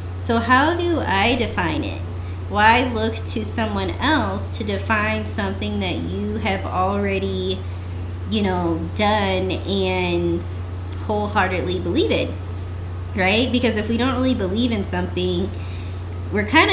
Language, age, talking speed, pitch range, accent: English, 20-39, 130 wpm, 90-100 Hz, American